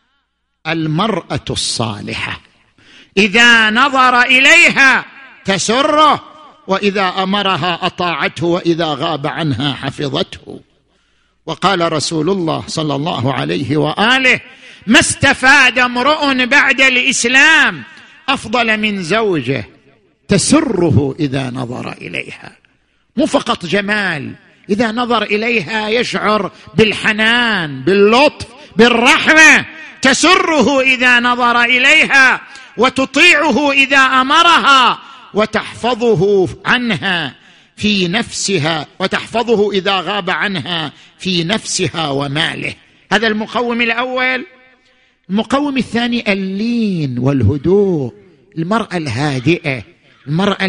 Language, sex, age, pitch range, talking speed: Arabic, male, 50-69, 180-250 Hz, 85 wpm